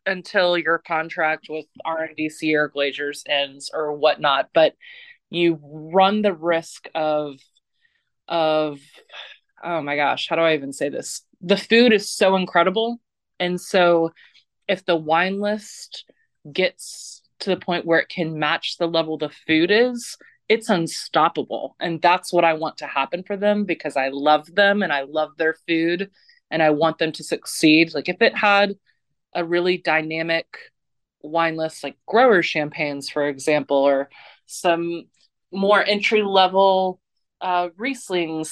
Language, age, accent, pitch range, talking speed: English, 20-39, American, 155-185 Hz, 150 wpm